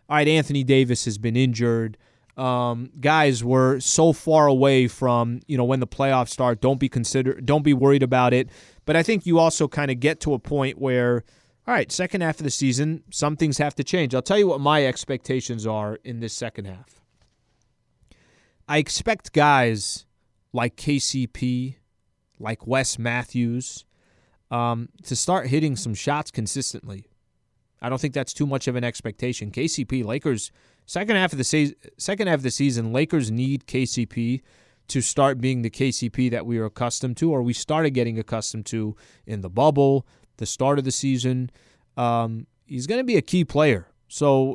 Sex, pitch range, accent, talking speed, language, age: male, 120-145 Hz, American, 180 wpm, English, 30-49